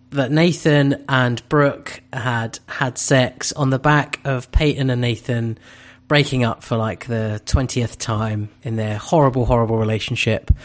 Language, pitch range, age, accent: English, 120-145 Hz, 30-49, British